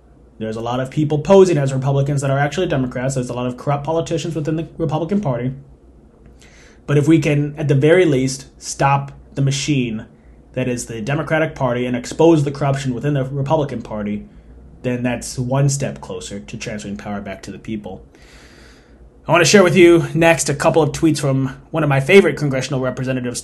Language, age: English, 30-49